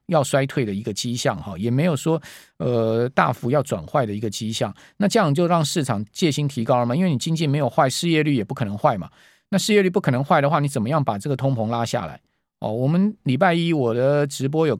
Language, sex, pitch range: Chinese, male, 120-165 Hz